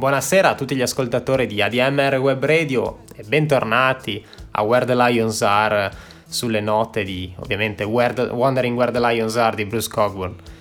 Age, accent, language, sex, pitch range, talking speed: 20-39, native, Italian, male, 105-125 Hz, 170 wpm